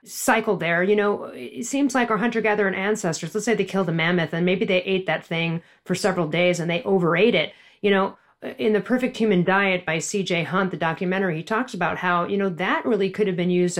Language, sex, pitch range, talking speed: English, female, 170-210 Hz, 230 wpm